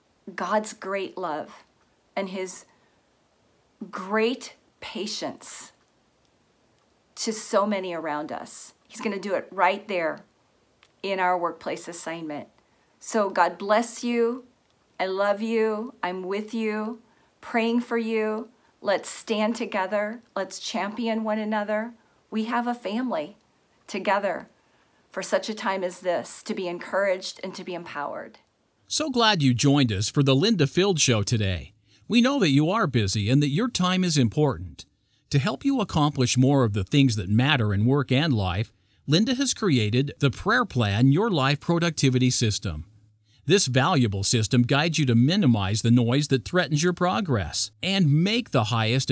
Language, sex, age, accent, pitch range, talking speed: English, female, 40-59, American, 120-205 Hz, 155 wpm